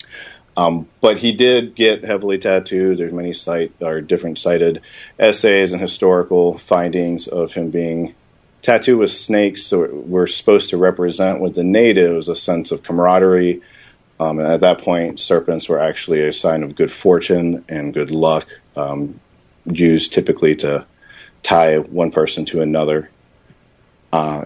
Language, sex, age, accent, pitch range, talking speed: English, male, 40-59, American, 80-100 Hz, 150 wpm